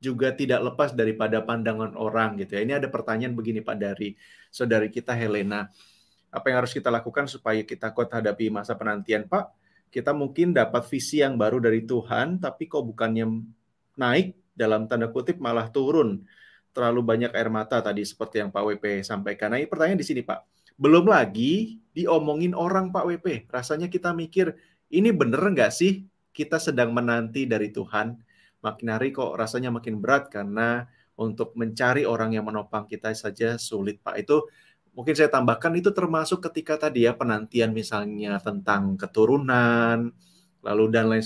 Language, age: Malay, 30-49